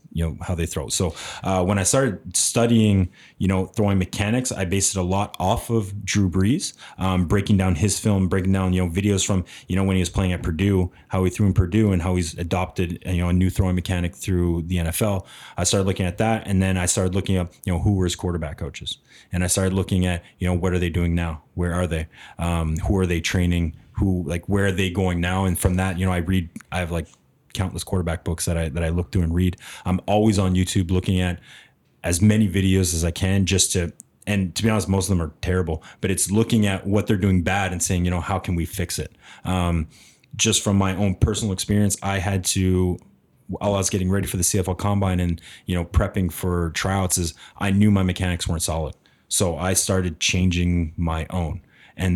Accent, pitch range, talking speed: American, 90-100 Hz, 235 wpm